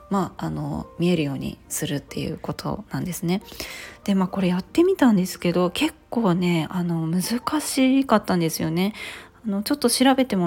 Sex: female